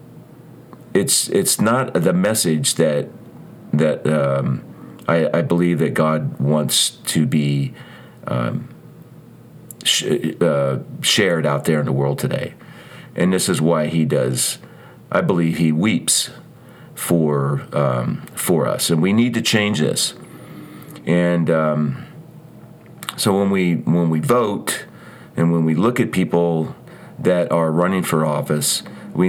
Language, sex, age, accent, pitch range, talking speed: English, male, 40-59, American, 75-95 Hz, 135 wpm